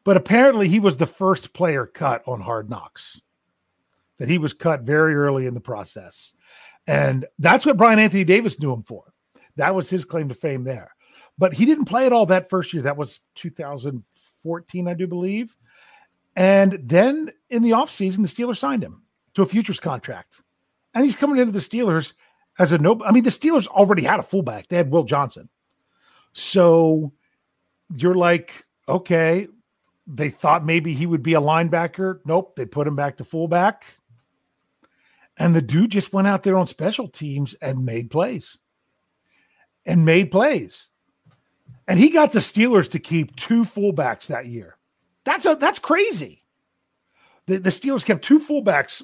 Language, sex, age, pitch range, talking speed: English, male, 40-59, 145-205 Hz, 175 wpm